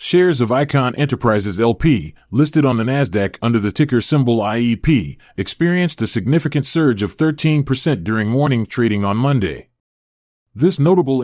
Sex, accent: male, American